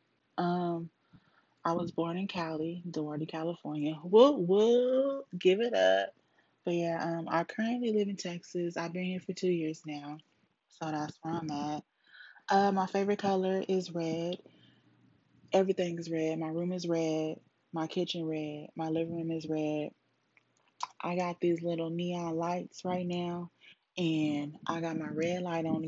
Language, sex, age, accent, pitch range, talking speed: English, female, 20-39, American, 160-195 Hz, 160 wpm